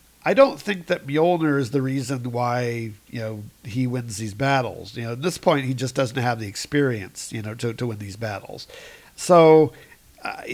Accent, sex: American, male